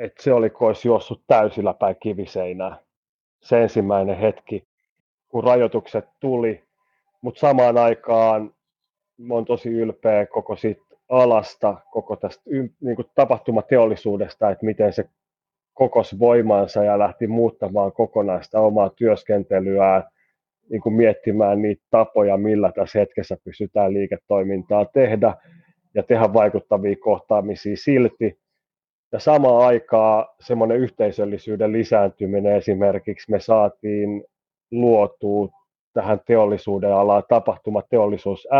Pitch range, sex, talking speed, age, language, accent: 100-120 Hz, male, 100 wpm, 30-49, Finnish, native